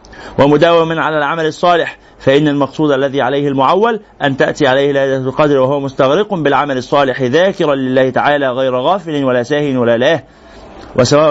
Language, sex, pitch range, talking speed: Arabic, male, 140-210 Hz, 150 wpm